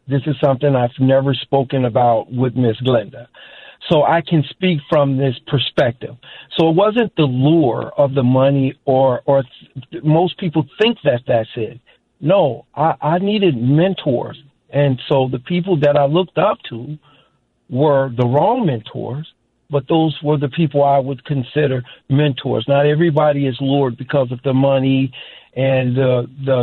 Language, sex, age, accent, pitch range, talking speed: English, male, 50-69, American, 125-150 Hz, 160 wpm